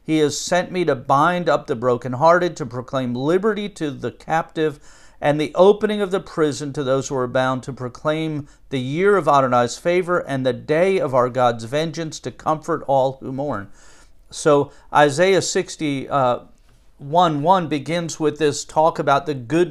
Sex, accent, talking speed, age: male, American, 180 wpm, 50-69